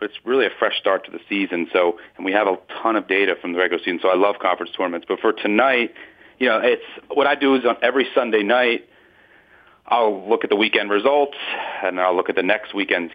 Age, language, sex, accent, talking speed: 40-59, English, male, American, 240 wpm